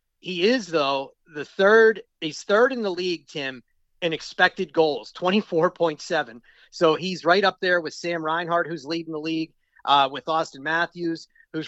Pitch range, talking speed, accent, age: 155-180 Hz, 165 wpm, American, 40-59